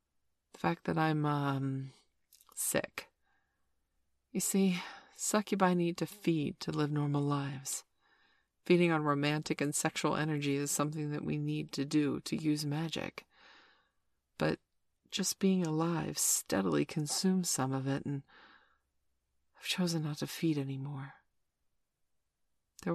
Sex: female